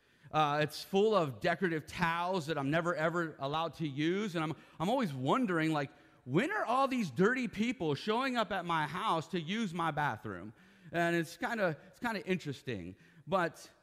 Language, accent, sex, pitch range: English, American, male, 130-170 Hz